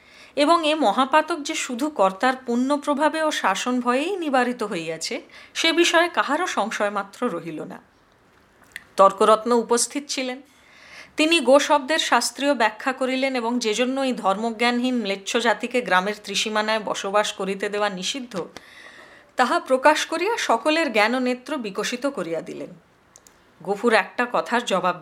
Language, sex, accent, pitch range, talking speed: Hindi, female, native, 200-275 Hz, 115 wpm